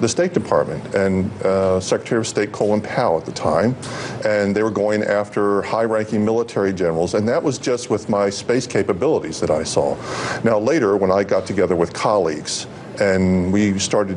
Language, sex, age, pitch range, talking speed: English, male, 50-69, 95-115 Hz, 180 wpm